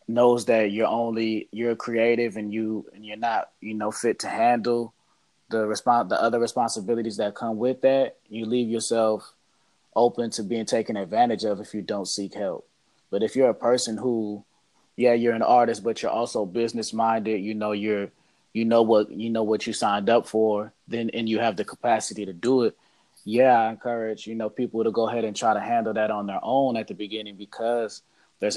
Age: 20-39